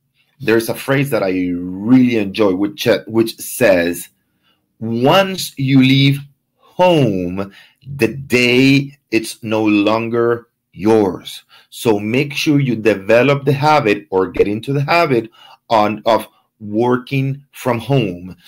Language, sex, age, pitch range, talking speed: English, male, 30-49, 110-145 Hz, 120 wpm